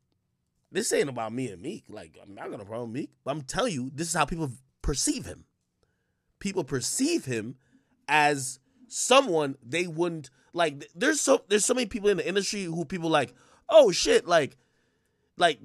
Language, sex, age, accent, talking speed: English, male, 20-39, American, 175 wpm